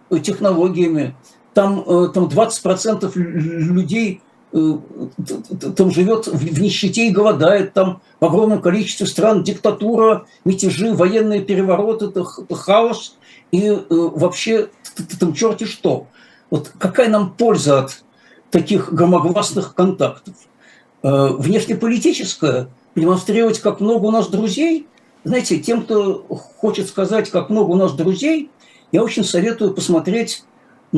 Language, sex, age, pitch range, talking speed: Russian, male, 60-79, 175-225 Hz, 110 wpm